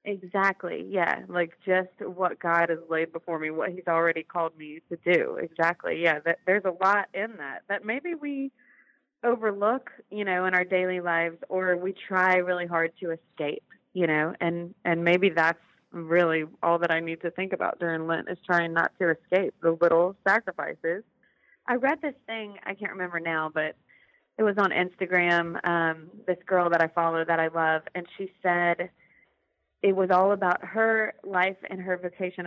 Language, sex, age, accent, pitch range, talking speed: English, female, 30-49, American, 165-190 Hz, 185 wpm